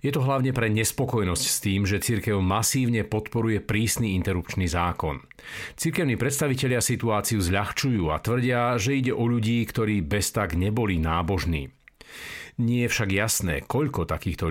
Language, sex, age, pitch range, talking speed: Slovak, male, 50-69, 90-120 Hz, 145 wpm